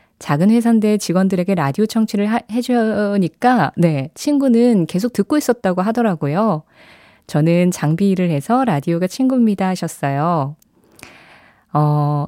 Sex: female